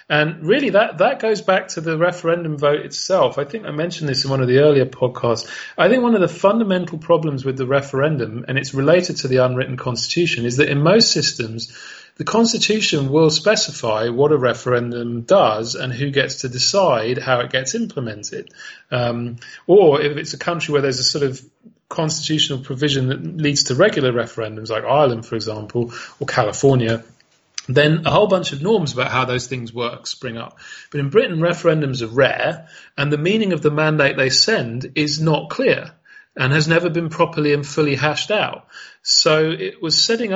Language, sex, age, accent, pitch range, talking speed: Dutch, male, 40-59, British, 130-160 Hz, 190 wpm